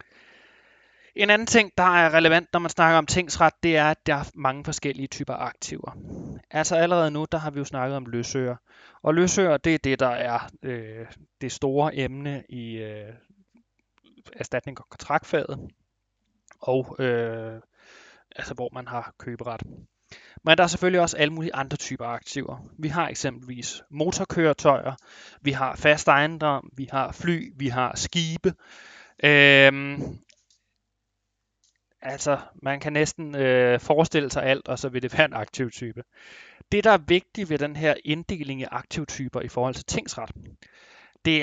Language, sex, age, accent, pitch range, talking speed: Danish, male, 20-39, native, 125-160 Hz, 155 wpm